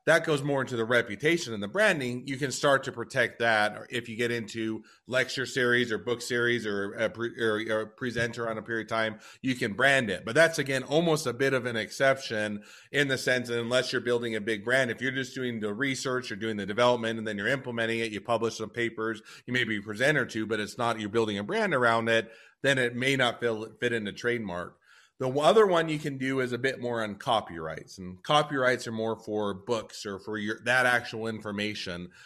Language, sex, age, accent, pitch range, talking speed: English, male, 30-49, American, 110-130 Hz, 230 wpm